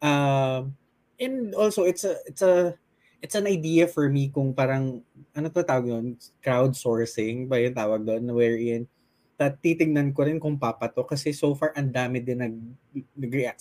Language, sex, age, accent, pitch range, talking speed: Filipino, male, 20-39, native, 120-145 Hz, 170 wpm